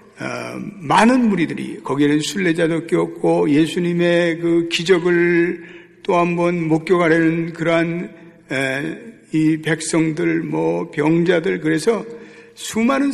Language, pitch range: Korean, 160-220 Hz